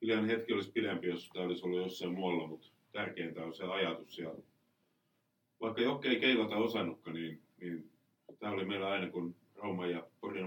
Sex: male